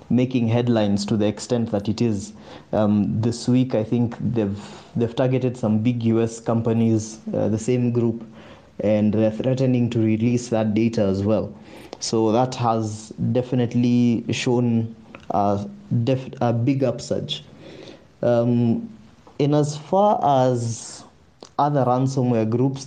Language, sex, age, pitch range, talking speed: English, male, 20-39, 110-125 Hz, 135 wpm